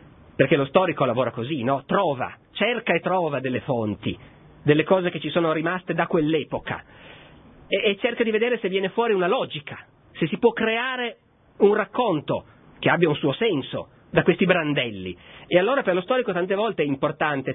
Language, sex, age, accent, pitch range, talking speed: Italian, male, 40-59, native, 125-180 Hz, 180 wpm